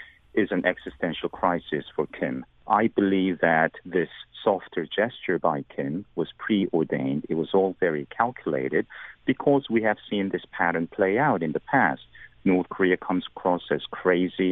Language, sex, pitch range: English, male, 90-105 Hz